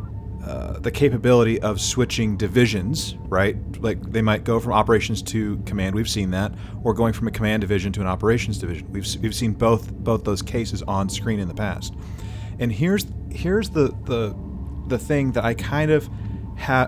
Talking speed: 185 wpm